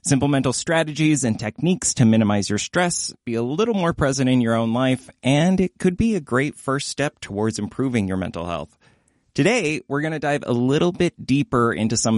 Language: English